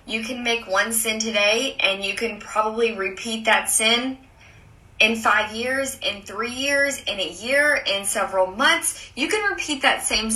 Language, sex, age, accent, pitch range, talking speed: English, female, 20-39, American, 205-280 Hz, 175 wpm